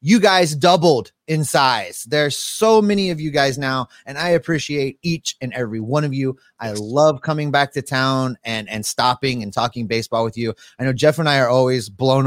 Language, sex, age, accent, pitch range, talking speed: English, male, 30-49, American, 110-145 Hz, 210 wpm